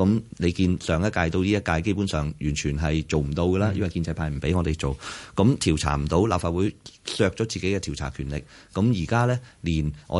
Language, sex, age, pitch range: Chinese, male, 30-49, 80-105 Hz